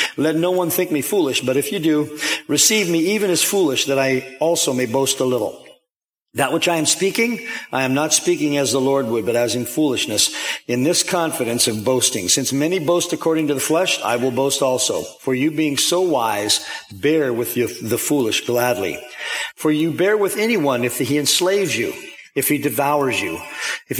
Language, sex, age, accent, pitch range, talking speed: English, male, 50-69, American, 135-175 Hz, 200 wpm